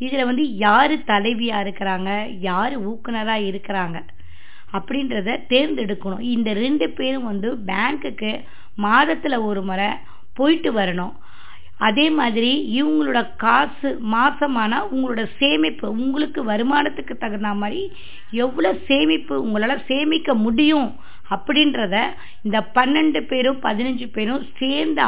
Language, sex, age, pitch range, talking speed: Tamil, female, 20-39, 210-275 Hz, 105 wpm